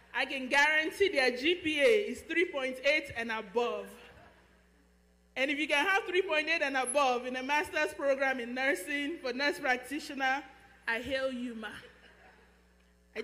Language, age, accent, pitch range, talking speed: English, 20-39, Nigerian, 245-315 Hz, 140 wpm